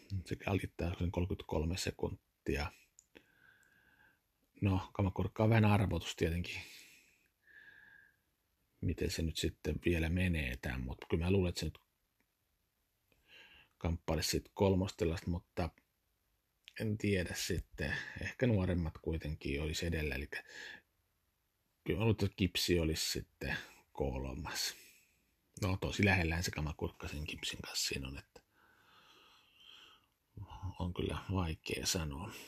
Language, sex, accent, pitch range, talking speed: Finnish, male, native, 80-100 Hz, 105 wpm